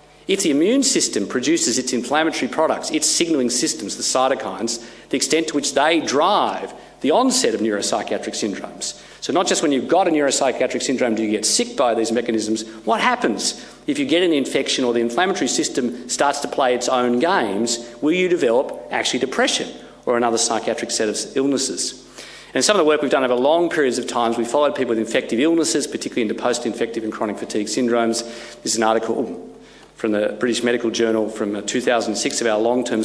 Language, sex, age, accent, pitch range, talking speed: English, male, 40-59, Australian, 115-150 Hz, 195 wpm